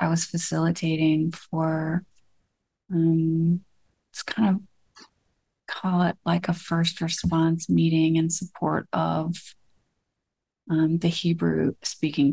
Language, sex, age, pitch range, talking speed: English, female, 30-49, 165-195 Hz, 105 wpm